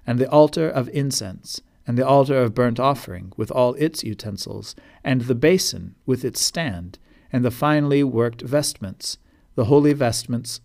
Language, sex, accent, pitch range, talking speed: English, male, American, 110-145 Hz, 165 wpm